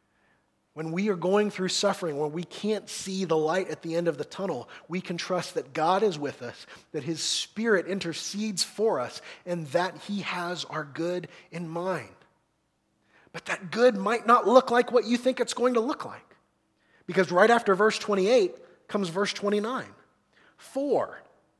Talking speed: 180 wpm